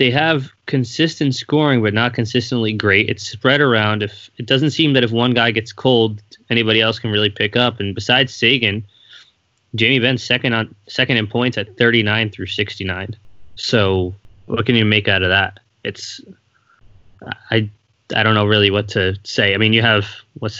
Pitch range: 105-120 Hz